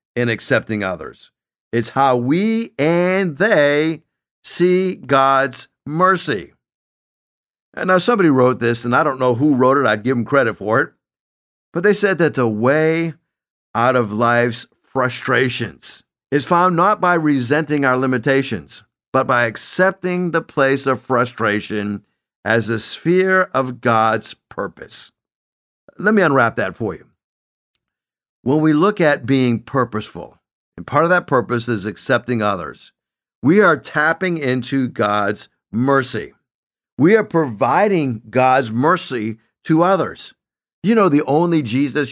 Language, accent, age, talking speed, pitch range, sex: English, American, 50-69, 140 wpm, 120-165 Hz, male